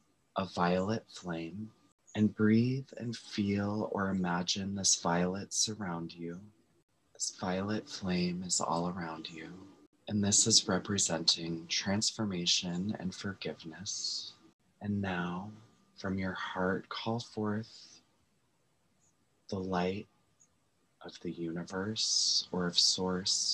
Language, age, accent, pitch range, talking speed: English, 20-39, American, 90-105 Hz, 105 wpm